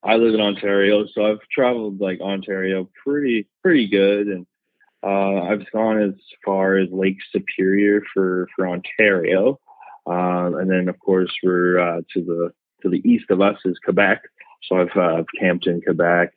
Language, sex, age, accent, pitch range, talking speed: English, male, 20-39, American, 90-105 Hz, 170 wpm